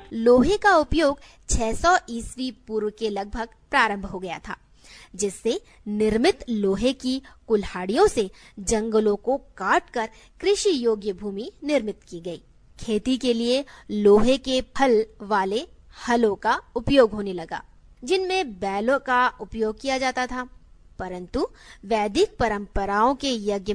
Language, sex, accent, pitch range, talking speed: Hindi, female, native, 210-280 Hz, 130 wpm